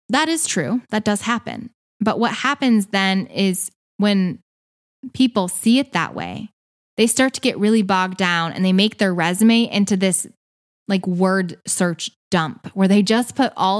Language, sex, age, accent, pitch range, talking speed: English, female, 10-29, American, 190-250 Hz, 175 wpm